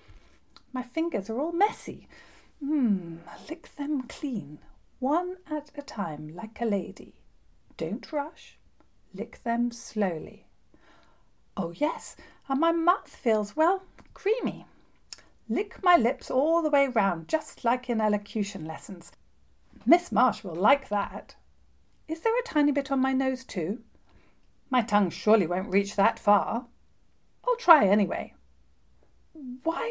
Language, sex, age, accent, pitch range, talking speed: English, female, 40-59, British, 210-295 Hz, 130 wpm